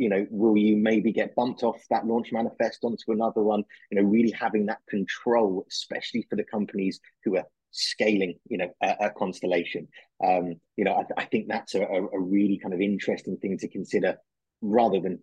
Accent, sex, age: British, male, 30-49